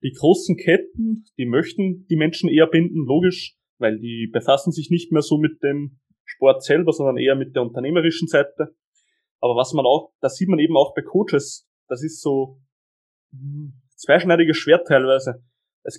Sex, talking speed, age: male, 170 wpm, 20-39